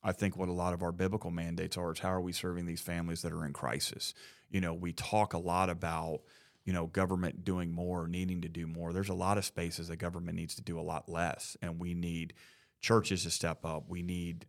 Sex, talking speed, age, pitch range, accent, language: male, 245 wpm, 30-49, 85-95 Hz, American, English